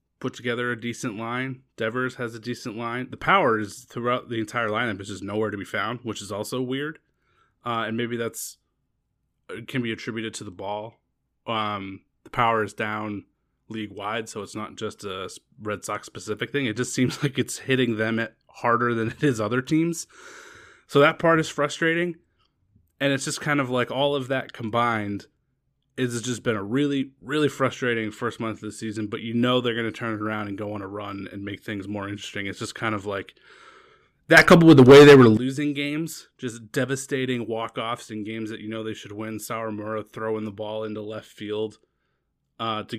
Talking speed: 200 wpm